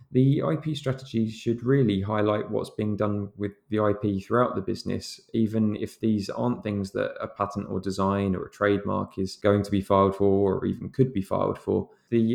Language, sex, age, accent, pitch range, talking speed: English, male, 20-39, British, 100-115 Hz, 200 wpm